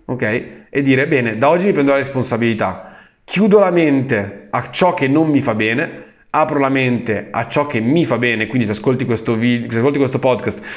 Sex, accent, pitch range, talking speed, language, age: male, native, 120-155 Hz, 210 wpm, Italian, 20-39